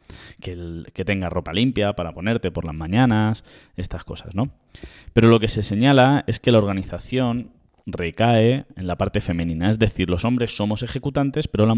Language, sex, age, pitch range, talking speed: Spanish, male, 20-39, 85-115 Hz, 180 wpm